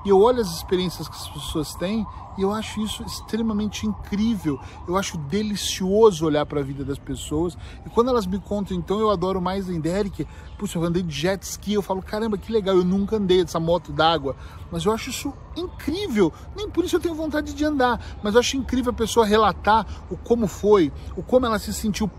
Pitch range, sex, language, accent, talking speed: 165-220 Hz, male, Portuguese, Brazilian, 215 wpm